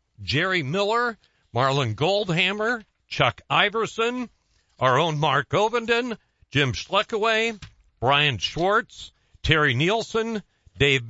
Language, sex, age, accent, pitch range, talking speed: English, male, 50-69, American, 130-205 Hz, 90 wpm